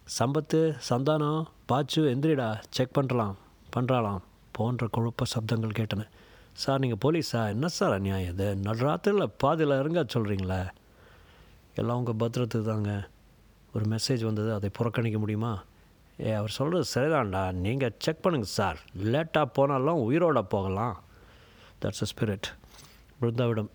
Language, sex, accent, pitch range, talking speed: Tamil, male, native, 105-130 Hz, 125 wpm